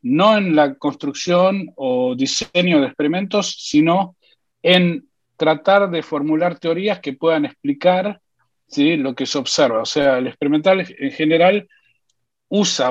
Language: Spanish